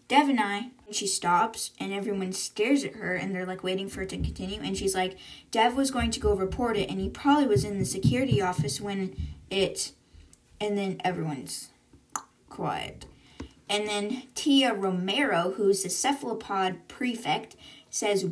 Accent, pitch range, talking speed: American, 185-230 Hz, 170 wpm